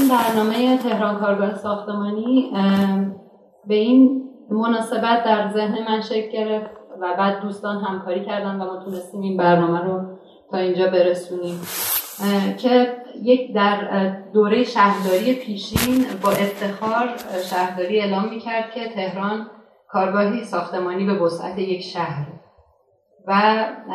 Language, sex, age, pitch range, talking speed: Persian, female, 30-49, 190-230 Hz, 120 wpm